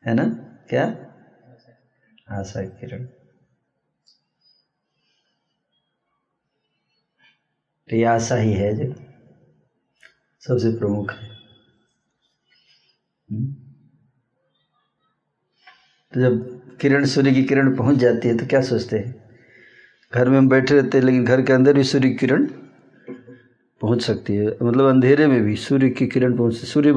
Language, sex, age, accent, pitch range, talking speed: Hindi, male, 60-79, native, 120-135 Hz, 110 wpm